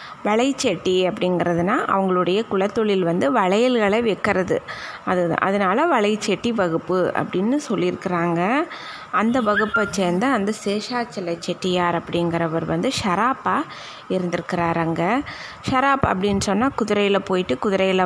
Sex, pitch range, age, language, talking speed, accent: female, 175-220 Hz, 20-39, Tamil, 95 wpm, native